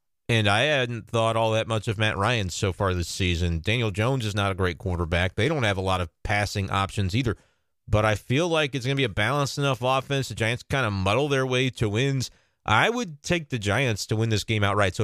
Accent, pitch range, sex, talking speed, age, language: American, 105-140 Hz, male, 245 wpm, 30-49, English